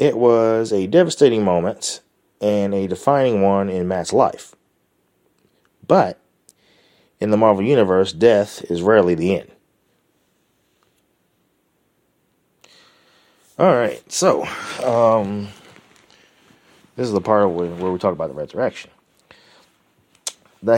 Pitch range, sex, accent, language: 95-115 Hz, male, American, English